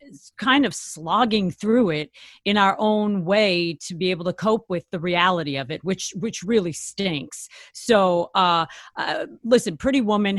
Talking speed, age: 170 wpm, 40-59